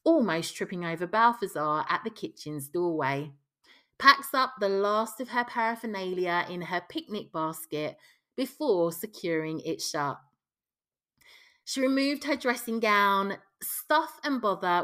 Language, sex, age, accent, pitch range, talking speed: English, female, 30-49, British, 170-240 Hz, 125 wpm